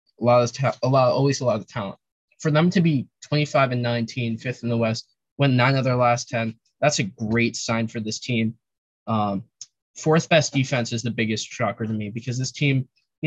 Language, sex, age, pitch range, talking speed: English, male, 10-29, 115-140 Hz, 215 wpm